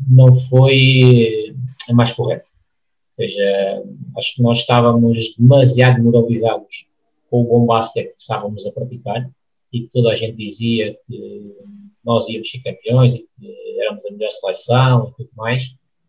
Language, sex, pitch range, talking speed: Portuguese, male, 115-130 Hz, 150 wpm